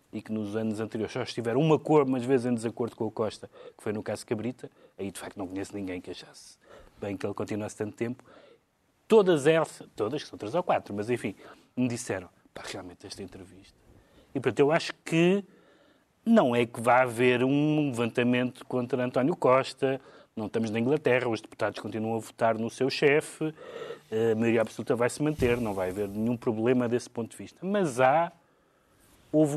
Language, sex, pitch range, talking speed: Portuguese, male, 115-160 Hz, 195 wpm